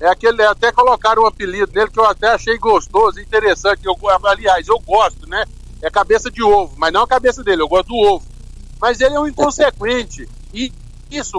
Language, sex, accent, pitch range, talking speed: Portuguese, male, Brazilian, 215-295 Hz, 200 wpm